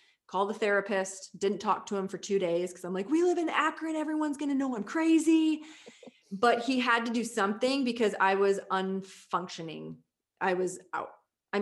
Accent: American